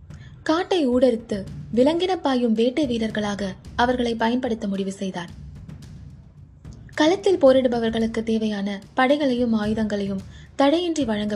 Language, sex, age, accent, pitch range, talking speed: Tamil, female, 20-39, native, 200-275 Hz, 90 wpm